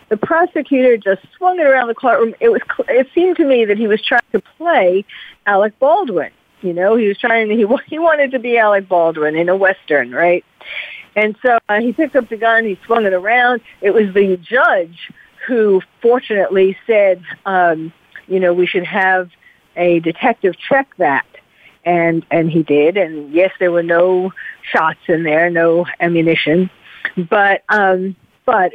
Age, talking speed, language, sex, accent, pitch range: 50-69, 175 wpm, English, female, American, 180-240 Hz